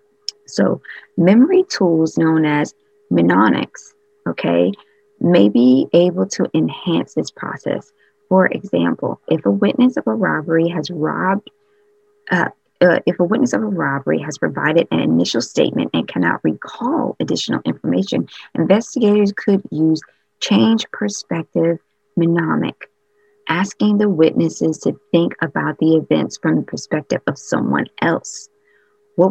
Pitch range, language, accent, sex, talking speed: 155-215 Hz, English, American, female, 130 wpm